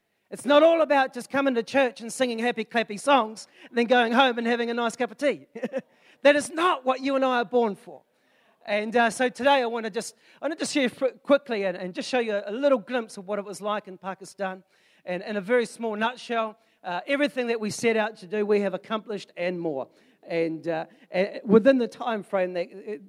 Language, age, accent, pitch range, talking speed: English, 40-59, Australian, 185-235 Hz, 225 wpm